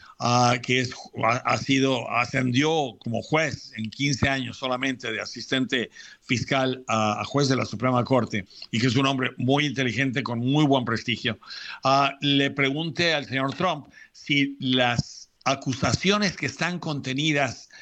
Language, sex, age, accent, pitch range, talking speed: Spanish, male, 60-79, Mexican, 125-150 Hz, 150 wpm